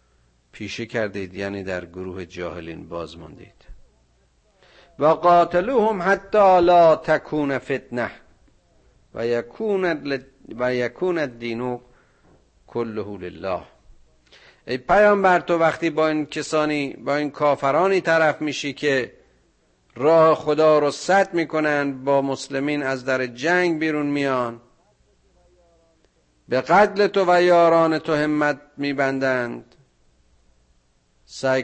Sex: male